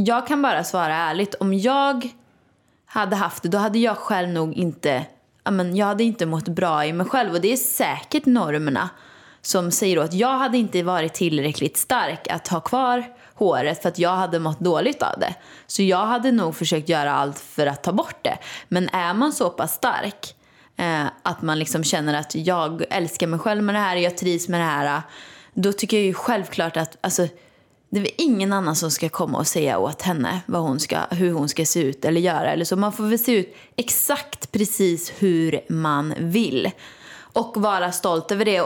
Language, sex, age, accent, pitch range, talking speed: Swedish, female, 20-39, native, 160-215 Hz, 200 wpm